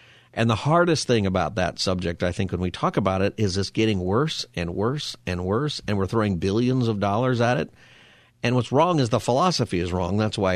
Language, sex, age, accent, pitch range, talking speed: English, male, 50-69, American, 90-120 Hz, 225 wpm